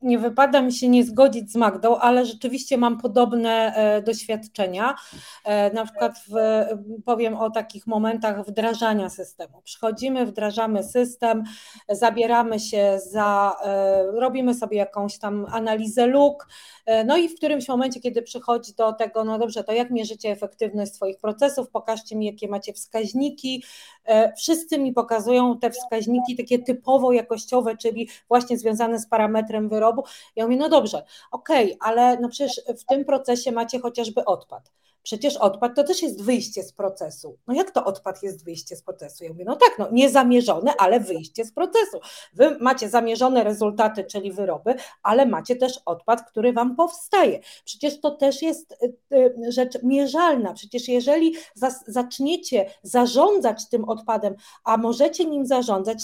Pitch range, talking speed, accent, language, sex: 220-260 Hz, 150 wpm, native, Polish, female